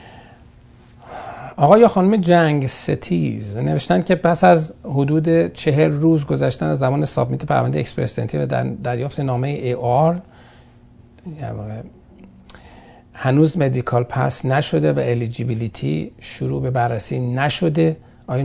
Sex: male